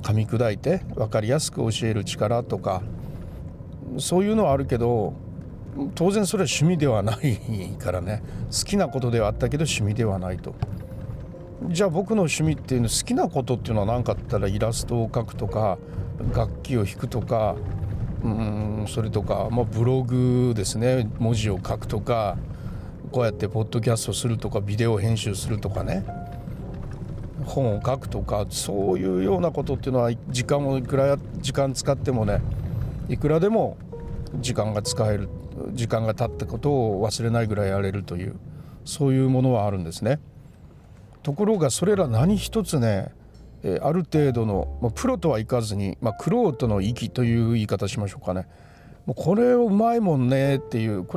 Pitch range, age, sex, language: 105-140 Hz, 60-79, male, Japanese